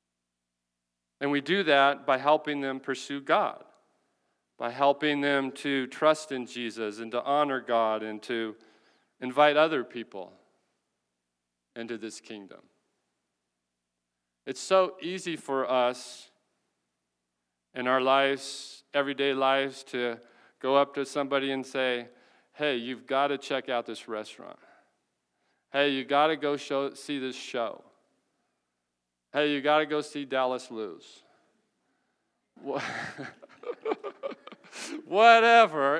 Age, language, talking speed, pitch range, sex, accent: 40-59, English, 120 wpm, 110-145 Hz, male, American